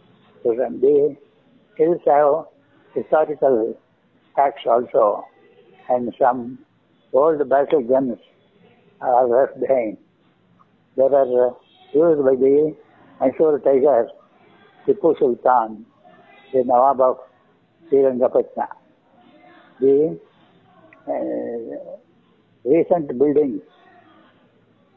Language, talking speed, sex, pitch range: English, 75 wpm, male, 130-180 Hz